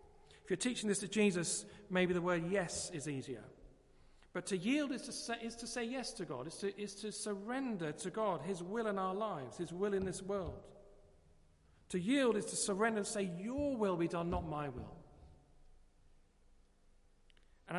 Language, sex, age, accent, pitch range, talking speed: English, male, 40-59, British, 130-205 Hz, 190 wpm